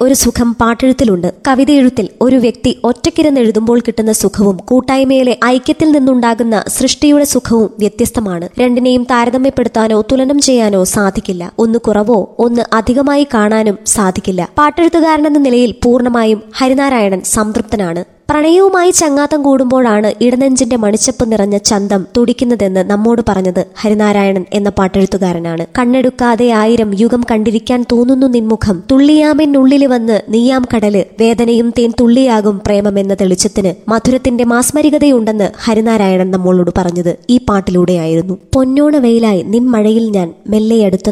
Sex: male